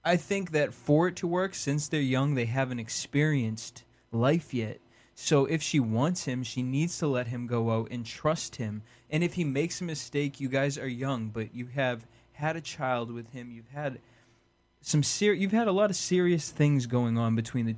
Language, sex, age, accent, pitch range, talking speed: English, male, 20-39, American, 120-150 Hz, 210 wpm